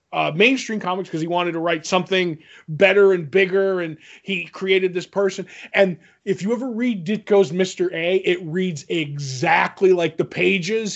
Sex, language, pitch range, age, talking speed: male, English, 170-205 Hz, 20-39, 170 wpm